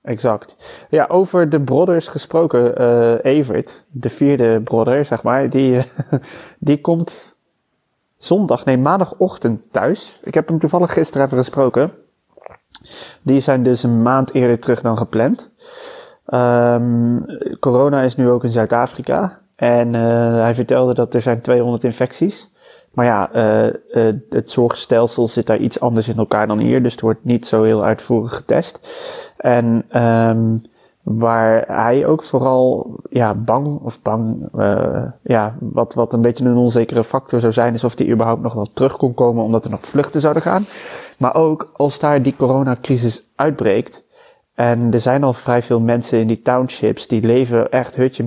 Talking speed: 165 wpm